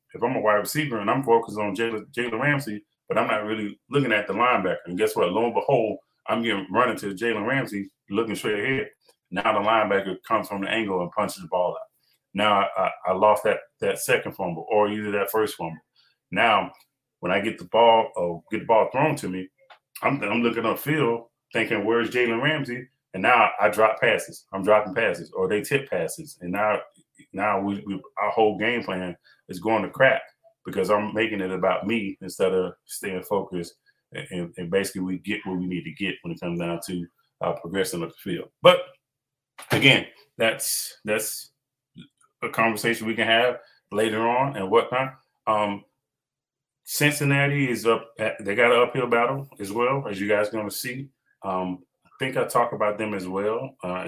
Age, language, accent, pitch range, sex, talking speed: 30-49, English, American, 100-135 Hz, male, 195 wpm